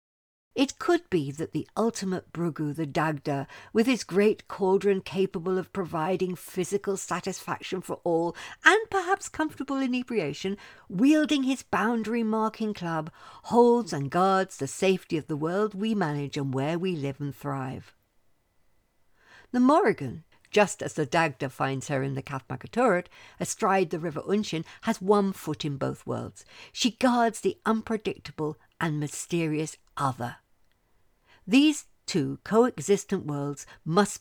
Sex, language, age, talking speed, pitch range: female, English, 60-79, 135 wpm, 145-220 Hz